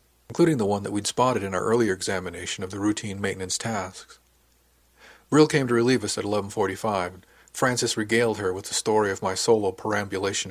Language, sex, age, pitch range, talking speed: English, male, 50-69, 90-115 Hz, 190 wpm